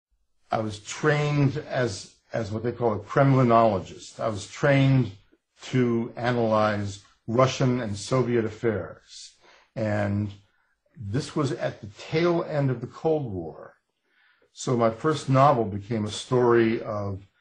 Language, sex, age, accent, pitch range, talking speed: English, male, 50-69, American, 105-130 Hz, 130 wpm